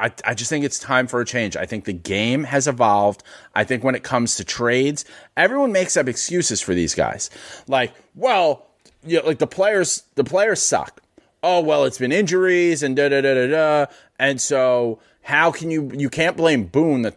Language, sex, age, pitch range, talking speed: English, male, 30-49, 120-170 Hz, 200 wpm